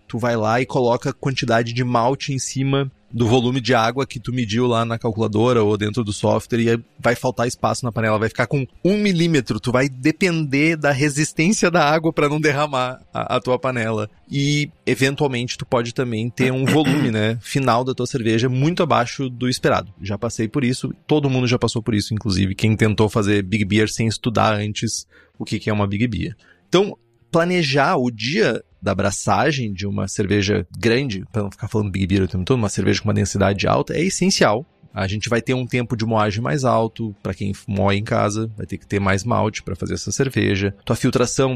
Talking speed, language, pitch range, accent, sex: 210 wpm, Portuguese, 110-140 Hz, Brazilian, male